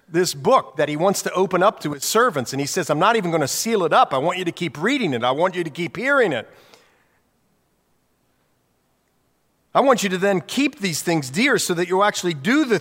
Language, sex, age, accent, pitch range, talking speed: English, male, 40-59, American, 120-180 Hz, 240 wpm